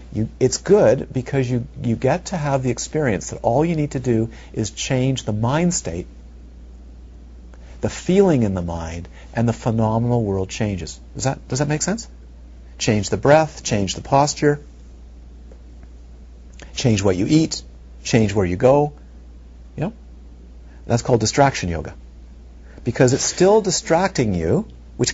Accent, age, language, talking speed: American, 50-69, English, 150 wpm